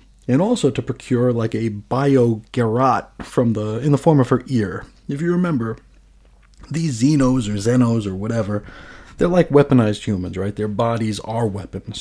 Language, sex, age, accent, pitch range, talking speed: English, male, 30-49, American, 110-145 Hz, 165 wpm